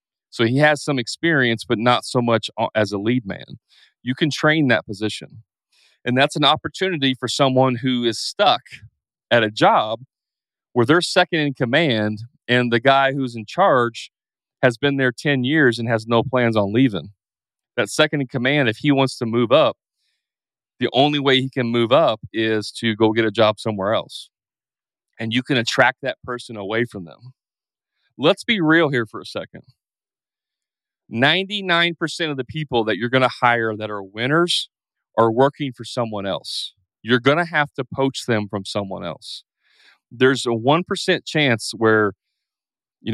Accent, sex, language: American, male, English